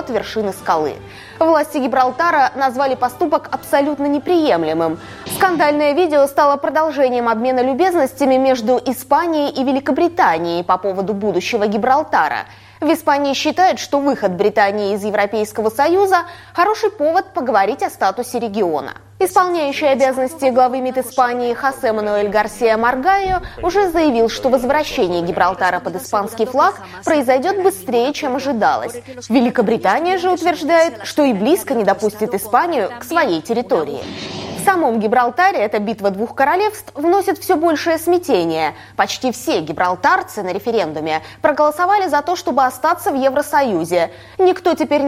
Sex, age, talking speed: female, 20-39, 125 wpm